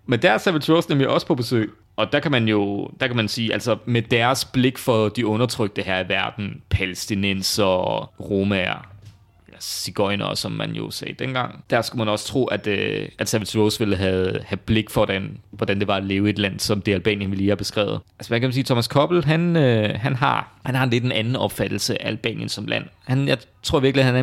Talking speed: 220 wpm